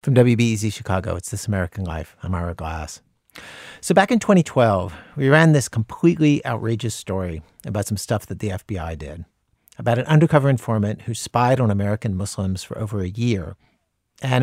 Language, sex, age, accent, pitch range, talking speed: English, male, 50-69, American, 105-140 Hz, 170 wpm